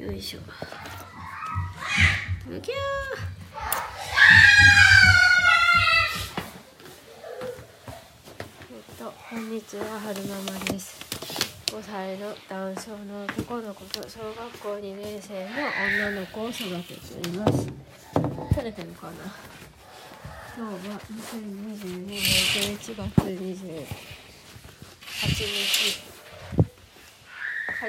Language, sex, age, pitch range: Japanese, female, 30-49, 160-215 Hz